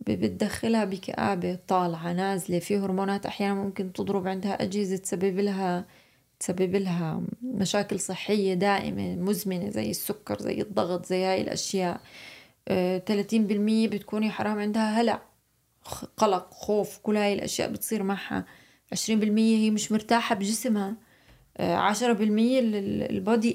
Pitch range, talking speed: 190-235 Hz, 120 wpm